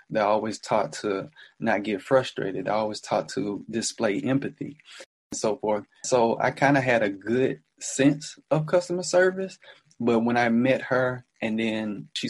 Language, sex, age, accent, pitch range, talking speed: English, male, 20-39, American, 110-125 Hz, 170 wpm